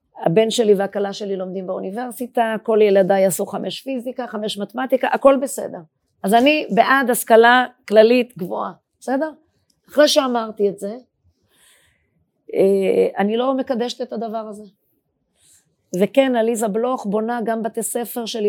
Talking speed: 130 wpm